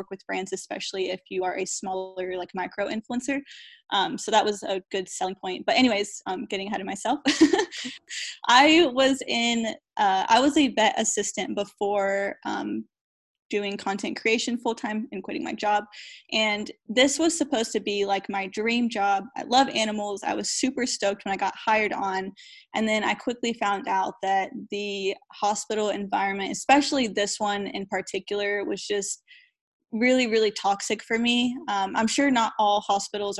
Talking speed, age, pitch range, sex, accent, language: 170 wpm, 10-29, 195-240 Hz, female, American, English